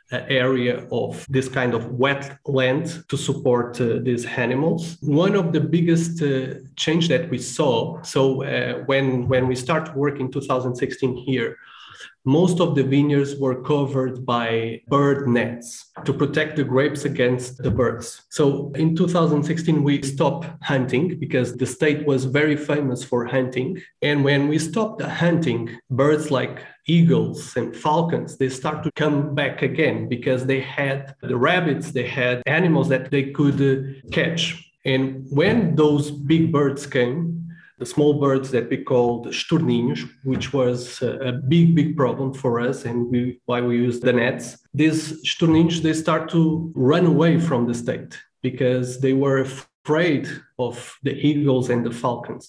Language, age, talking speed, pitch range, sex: English, 30-49, 155 wpm, 125-155 Hz, male